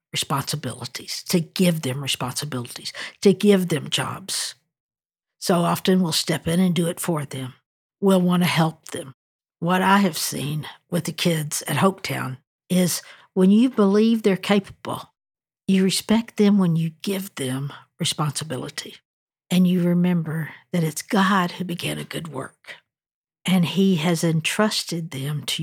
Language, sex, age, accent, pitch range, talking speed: English, female, 60-79, American, 160-200 Hz, 150 wpm